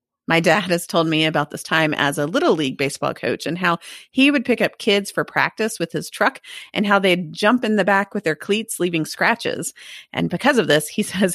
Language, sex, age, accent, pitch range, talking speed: English, female, 30-49, American, 155-225 Hz, 235 wpm